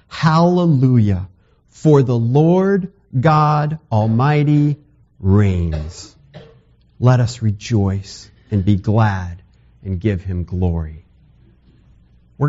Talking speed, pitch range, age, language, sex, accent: 85 wpm, 100-140 Hz, 50-69, English, male, American